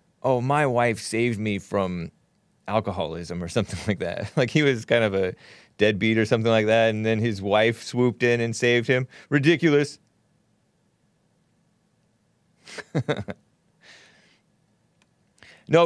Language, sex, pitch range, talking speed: English, male, 110-160 Hz, 125 wpm